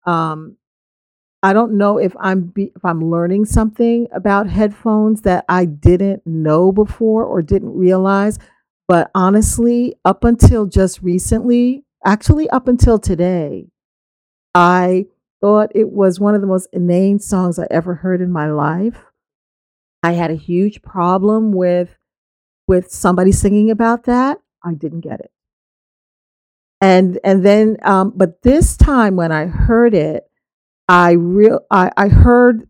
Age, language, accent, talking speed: 40-59, English, American, 140 wpm